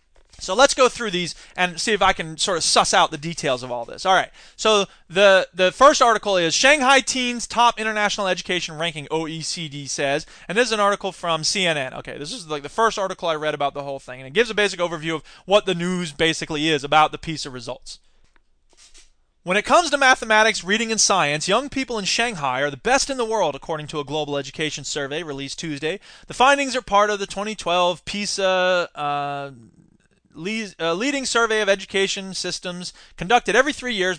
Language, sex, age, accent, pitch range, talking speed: English, male, 20-39, American, 155-215 Hz, 205 wpm